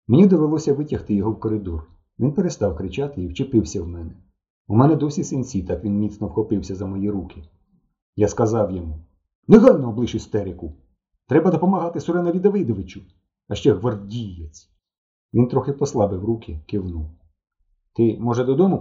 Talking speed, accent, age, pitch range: 145 wpm, native, 40-59, 90-130 Hz